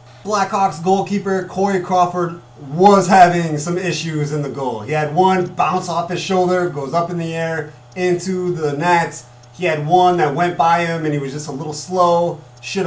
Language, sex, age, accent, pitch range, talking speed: English, male, 30-49, American, 135-190 Hz, 190 wpm